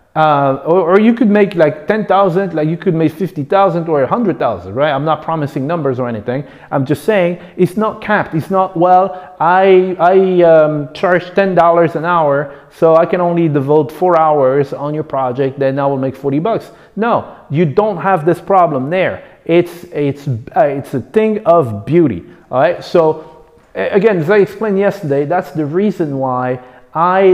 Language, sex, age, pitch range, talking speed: English, male, 30-49, 140-195 Hz, 190 wpm